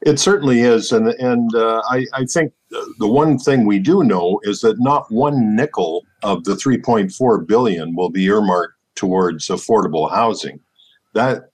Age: 50-69